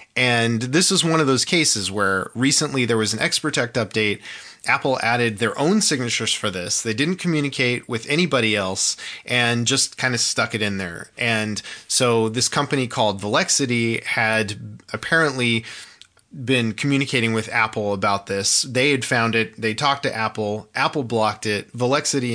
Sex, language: male, English